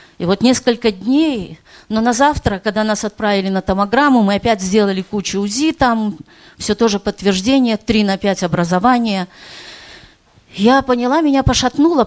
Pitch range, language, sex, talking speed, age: 185-245 Hz, Russian, female, 145 wpm, 40-59